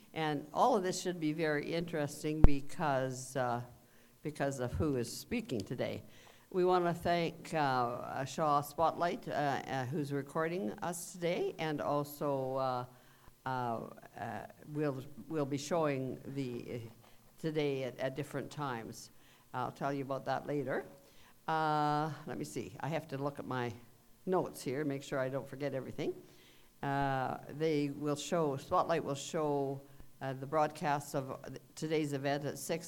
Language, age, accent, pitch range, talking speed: English, 60-79, American, 130-160 Hz, 155 wpm